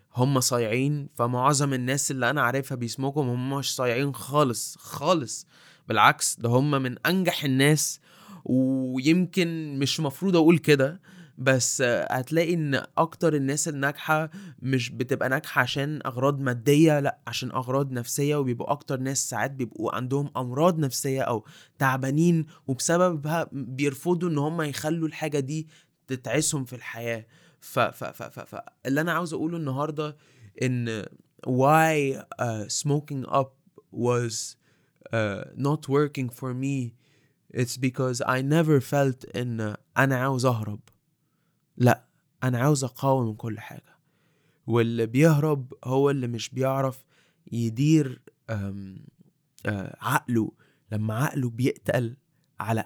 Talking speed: 125 wpm